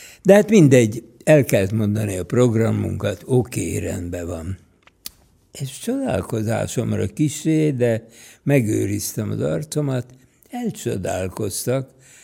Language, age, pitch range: Hungarian, 60-79, 100-140 Hz